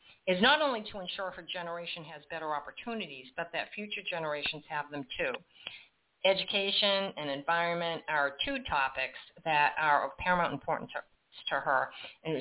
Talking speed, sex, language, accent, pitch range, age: 155 wpm, female, English, American, 155-205 Hz, 50-69